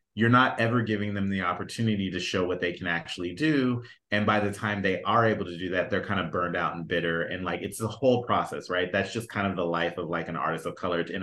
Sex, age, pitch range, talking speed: male, 30-49, 90-120 Hz, 275 wpm